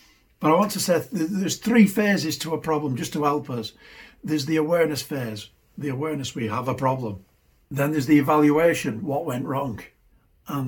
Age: 60-79